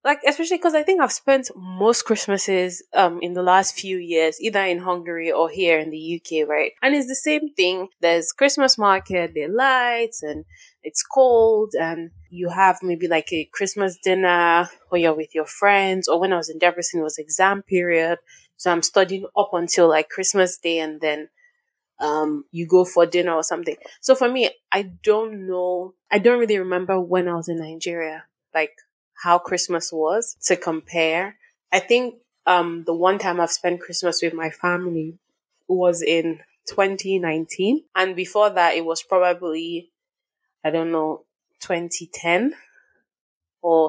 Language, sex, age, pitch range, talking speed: English, female, 20-39, 165-195 Hz, 170 wpm